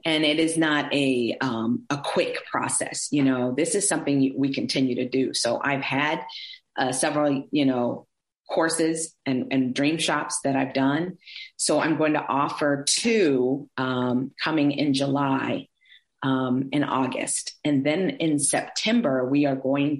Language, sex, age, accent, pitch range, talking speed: English, female, 40-59, American, 135-185 Hz, 160 wpm